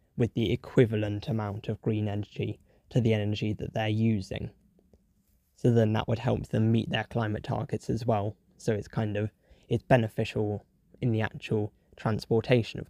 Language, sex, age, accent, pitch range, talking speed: English, male, 10-29, British, 105-120 Hz, 165 wpm